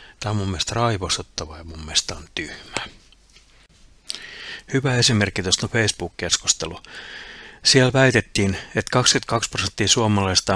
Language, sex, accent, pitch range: Finnish, male, native, 85-105 Hz